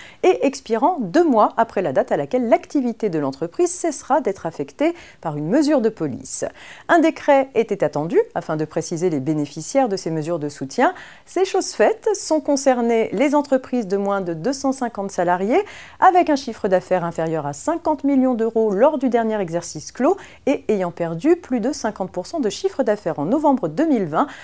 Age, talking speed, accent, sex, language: 40-59, 175 wpm, French, female, French